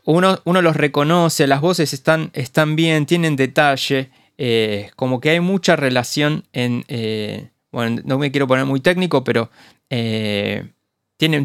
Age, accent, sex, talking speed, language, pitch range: 20-39, Argentinian, male, 150 wpm, Spanish, 120-160 Hz